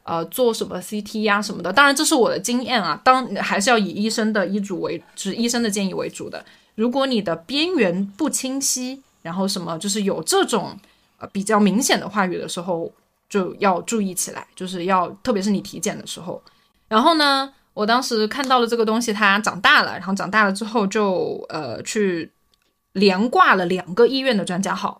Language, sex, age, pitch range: Chinese, female, 20-39, 195-245 Hz